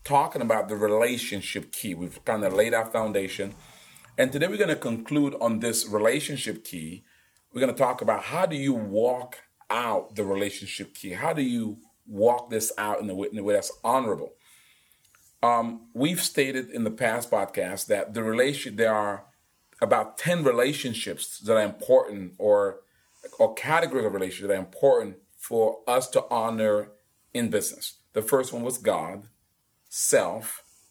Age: 40-59